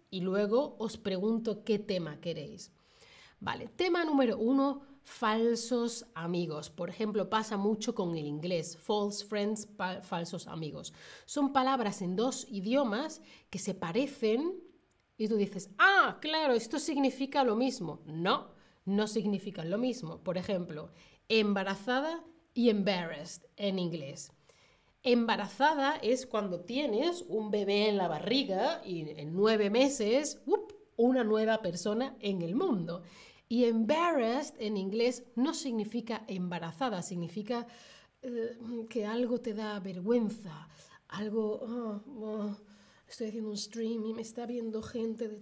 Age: 30-49